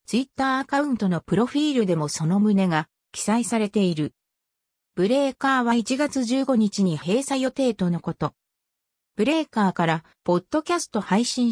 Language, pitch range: Japanese, 175-260 Hz